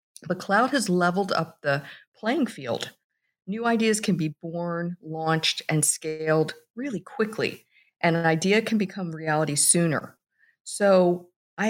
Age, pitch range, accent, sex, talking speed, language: 50-69, 150-195 Hz, American, female, 140 wpm, English